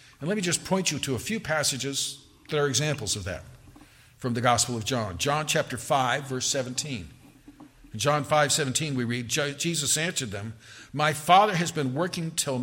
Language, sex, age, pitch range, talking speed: English, male, 50-69, 125-175 Hz, 190 wpm